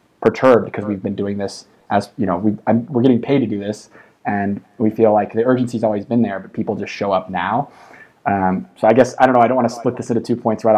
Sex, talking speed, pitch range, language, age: male, 280 wpm, 105-120 Hz, English, 20-39